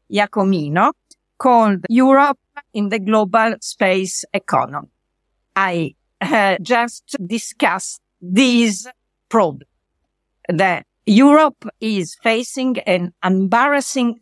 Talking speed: 85 wpm